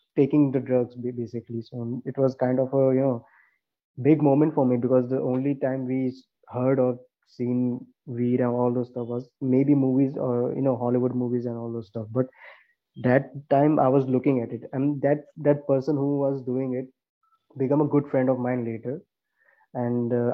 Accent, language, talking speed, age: Indian, English, 190 wpm, 20-39